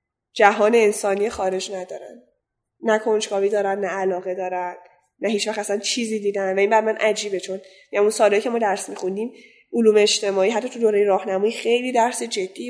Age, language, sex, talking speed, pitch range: 10-29, Persian, female, 170 wpm, 195-250 Hz